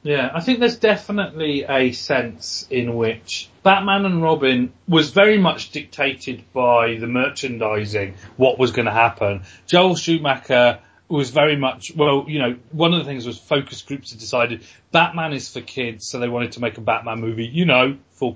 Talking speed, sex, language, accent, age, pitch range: 185 wpm, male, English, British, 30-49, 115-155 Hz